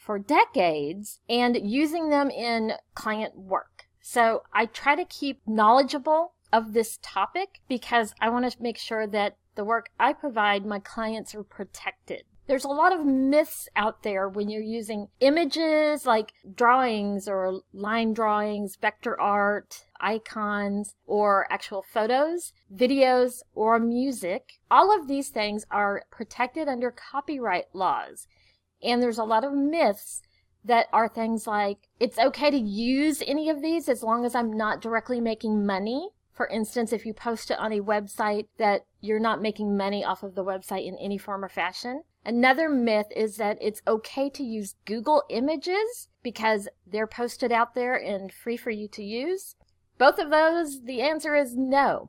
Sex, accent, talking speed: female, American, 165 wpm